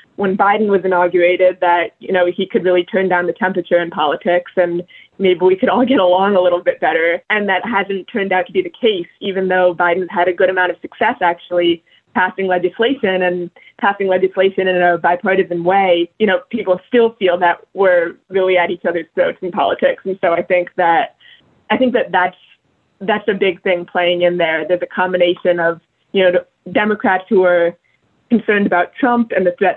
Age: 20-39